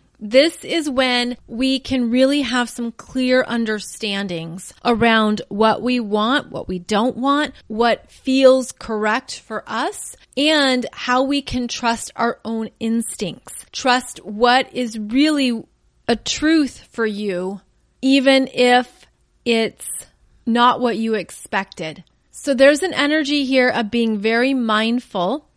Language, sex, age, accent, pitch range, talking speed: English, female, 30-49, American, 220-260 Hz, 130 wpm